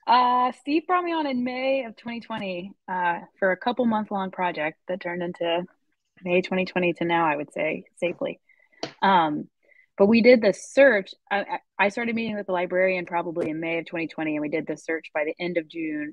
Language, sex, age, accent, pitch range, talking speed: English, female, 20-39, American, 165-205 Hz, 205 wpm